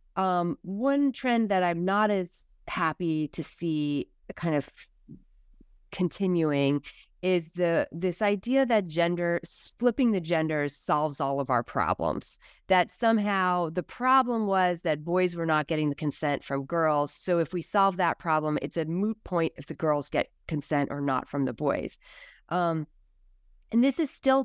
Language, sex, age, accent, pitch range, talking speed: English, female, 30-49, American, 145-185 Hz, 160 wpm